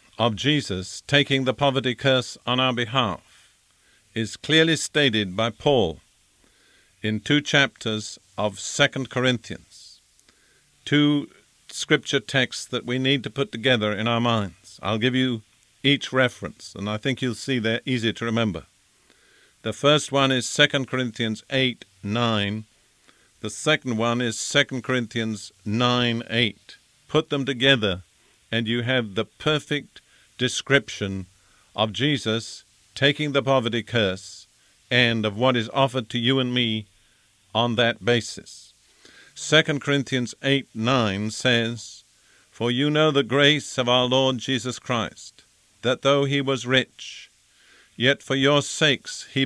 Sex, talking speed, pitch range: male, 135 wpm, 110-135 Hz